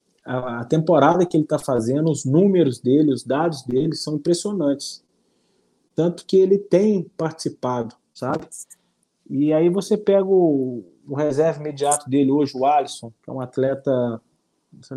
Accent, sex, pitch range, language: Brazilian, male, 130-160 Hz, Portuguese